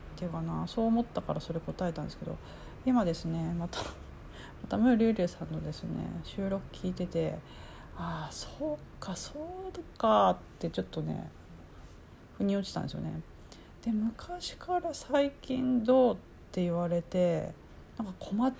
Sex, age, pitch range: female, 40-59, 155-255 Hz